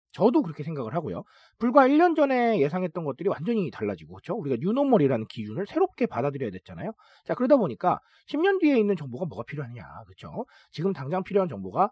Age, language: 40-59, Korean